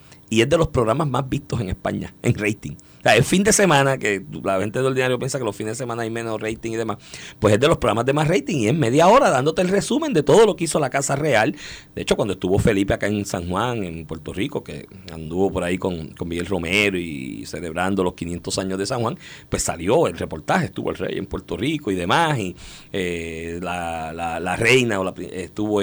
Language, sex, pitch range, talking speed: Spanish, male, 90-115 Hz, 245 wpm